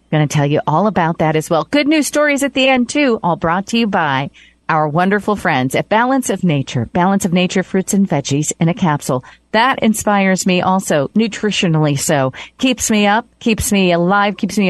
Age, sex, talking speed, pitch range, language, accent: 40-59, female, 205 wpm, 155-215 Hz, English, American